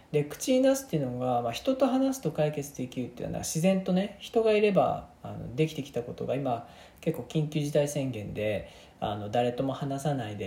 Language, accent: Japanese, native